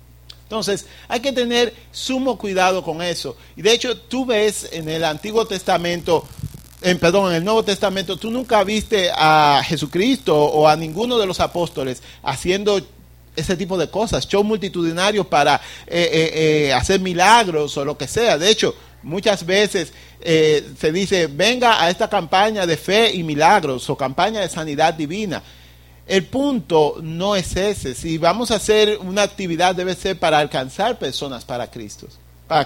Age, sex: 50-69, male